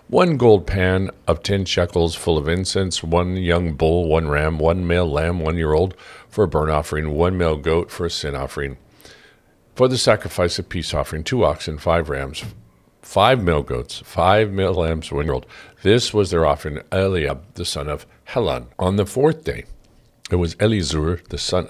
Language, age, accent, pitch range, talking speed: English, 50-69, American, 75-95 Hz, 190 wpm